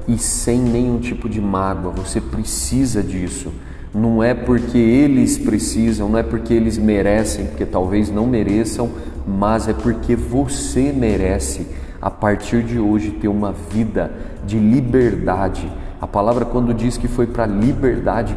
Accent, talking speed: Brazilian, 145 wpm